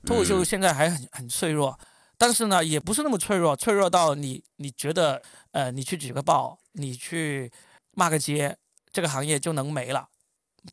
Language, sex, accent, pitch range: Chinese, male, native, 145-185 Hz